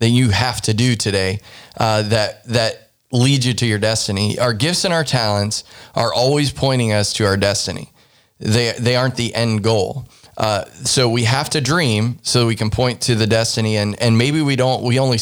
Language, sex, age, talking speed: English, male, 20-39, 210 wpm